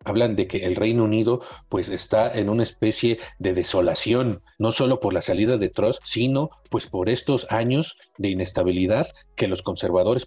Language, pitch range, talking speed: Spanish, 95-130 Hz, 175 wpm